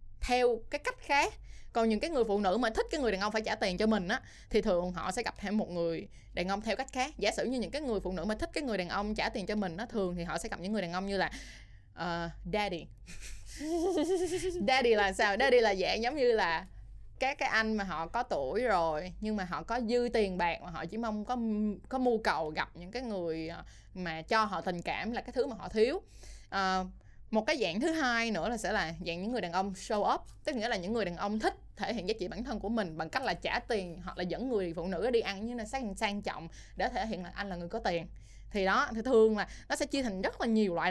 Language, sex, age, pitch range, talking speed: Vietnamese, female, 20-39, 185-240 Hz, 275 wpm